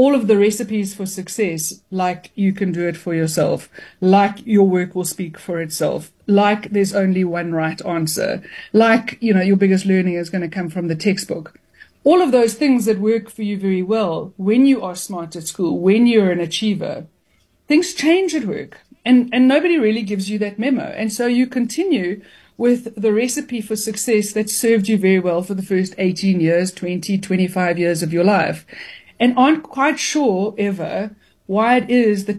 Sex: female